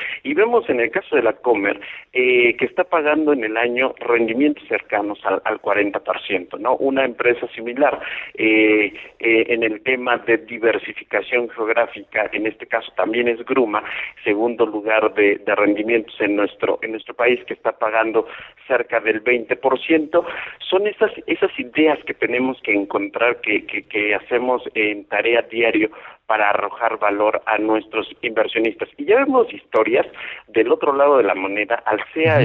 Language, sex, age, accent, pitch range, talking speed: Spanish, male, 50-69, Mexican, 110-145 Hz, 160 wpm